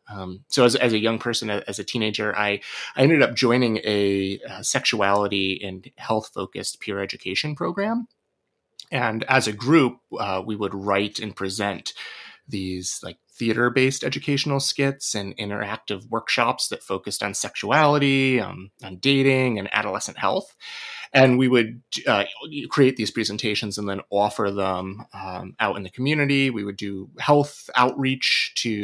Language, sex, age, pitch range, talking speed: English, male, 30-49, 100-130 Hz, 150 wpm